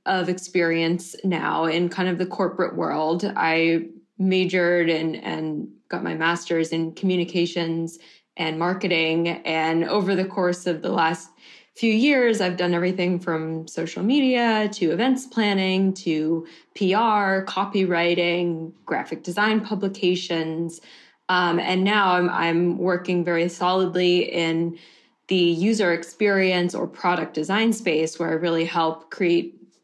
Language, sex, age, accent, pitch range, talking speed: English, female, 20-39, American, 165-190 Hz, 130 wpm